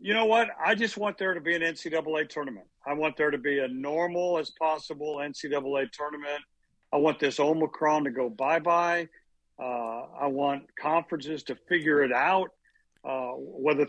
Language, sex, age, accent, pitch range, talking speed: English, male, 60-79, American, 135-175 Hz, 175 wpm